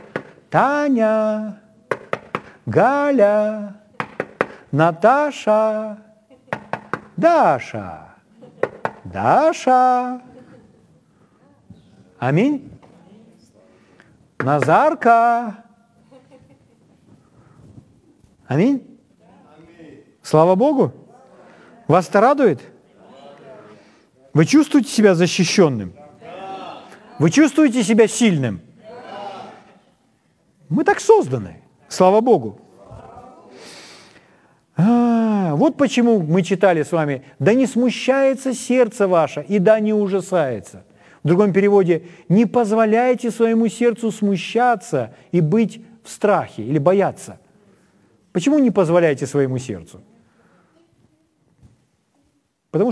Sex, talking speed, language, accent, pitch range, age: male, 70 wpm, Ukrainian, native, 175-245 Hz, 50-69